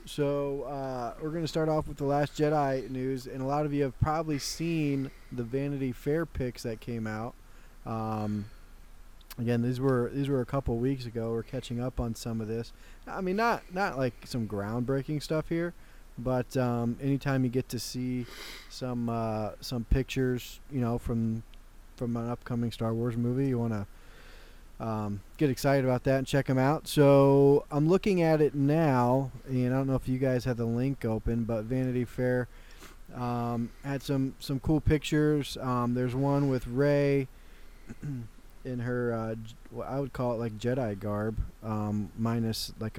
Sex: male